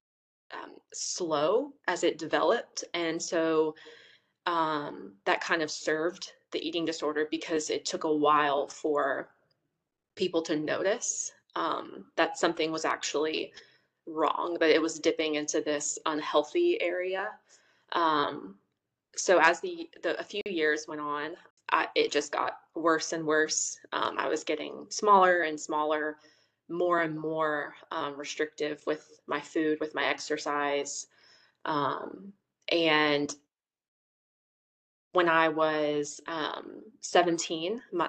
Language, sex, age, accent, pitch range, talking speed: English, female, 20-39, American, 150-175 Hz, 125 wpm